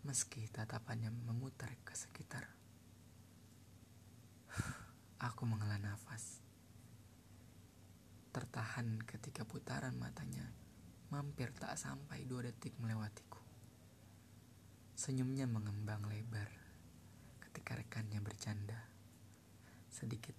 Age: 20-39